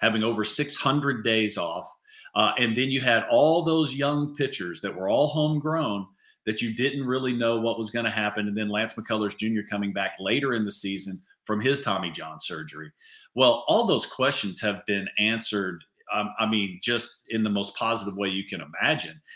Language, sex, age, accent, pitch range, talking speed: English, male, 50-69, American, 110-140 Hz, 195 wpm